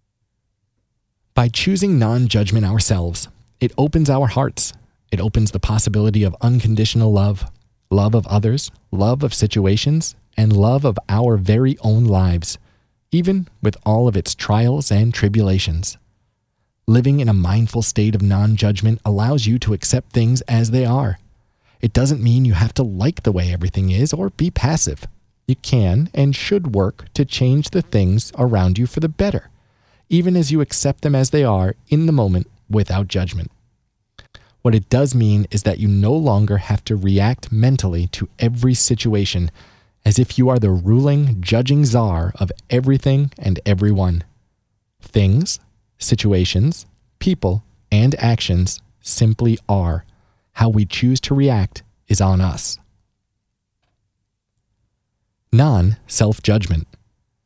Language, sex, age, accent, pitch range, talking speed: English, male, 30-49, American, 100-125 Hz, 140 wpm